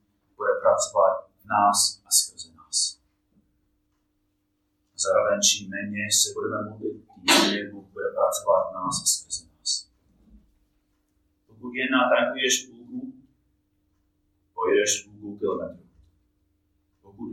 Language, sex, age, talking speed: Czech, male, 30-49, 115 wpm